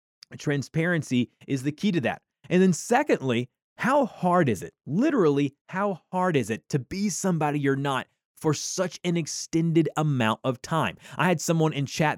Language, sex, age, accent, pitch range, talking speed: English, male, 20-39, American, 135-180 Hz, 170 wpm